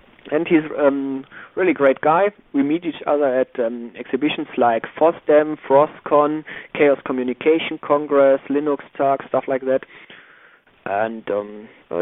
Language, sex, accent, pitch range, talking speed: English, male, German, 125-155 Hz, 135 wpm